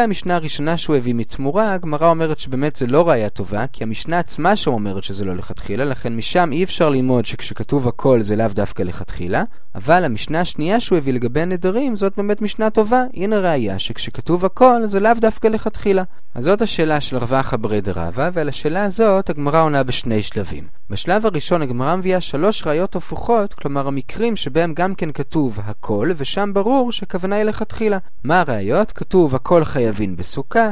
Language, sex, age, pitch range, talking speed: Hebrew, male, 20-39, 130-195 Hz, 150 wpm